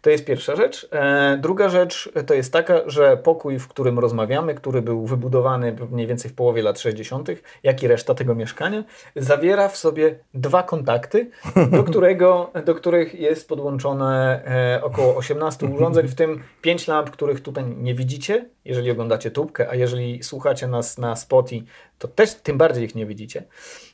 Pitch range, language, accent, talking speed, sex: 125-180 Hz, Polish, native, 165 wpm, male